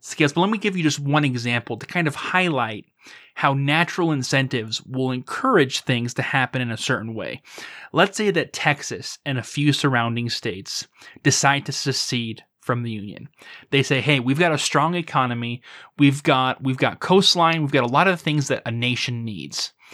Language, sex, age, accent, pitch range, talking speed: English, male, 30-49, American, 125-160 Hz, 190 wpm